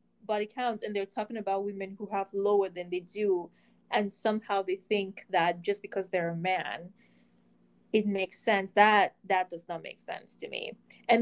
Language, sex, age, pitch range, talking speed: English, female, 20-39, 195-245 Hz, 185 wpm